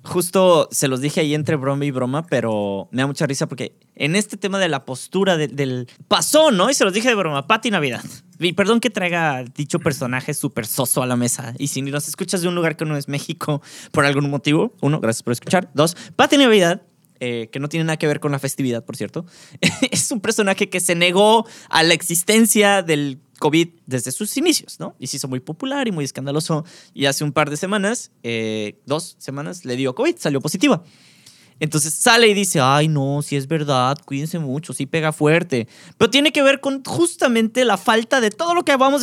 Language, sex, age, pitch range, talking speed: Spanish, male, 20-39, 140-195 Hz, 215 wpm